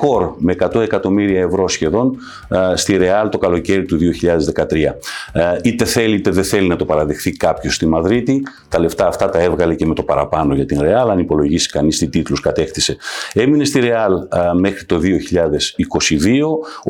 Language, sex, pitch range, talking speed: Greek, male, 85-120 Hz, 175 wpm